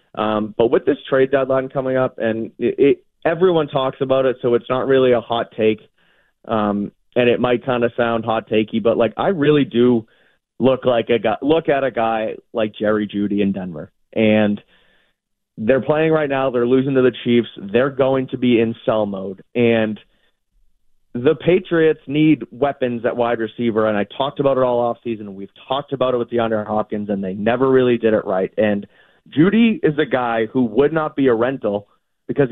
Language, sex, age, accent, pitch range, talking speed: English, male, 30-49, American, 110-135 Hz, 200 wpm